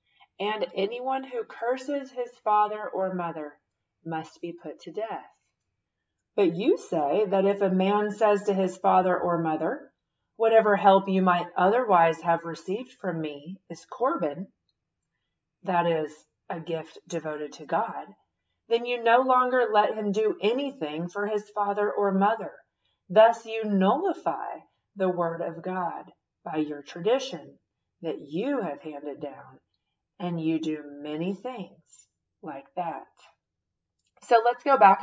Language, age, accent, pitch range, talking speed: English, 40-59, American, 165-210 Hz, 140 wpm